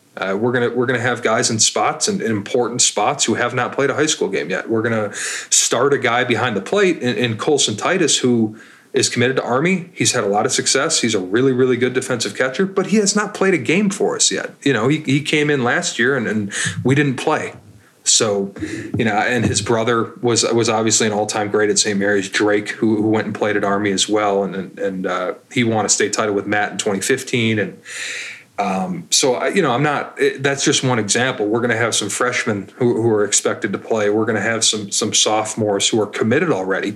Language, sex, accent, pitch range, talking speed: English, male, American, 105-130 Hz, 240 wpm